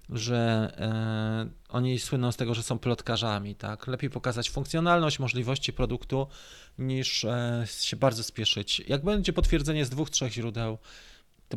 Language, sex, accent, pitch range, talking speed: Polish, male, native, 115-160 Hz, 135 wpm